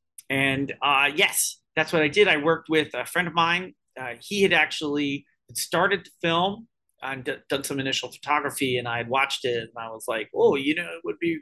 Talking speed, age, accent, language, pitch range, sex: 225 wpm, 30-49, American, English, 135-195 Hz, male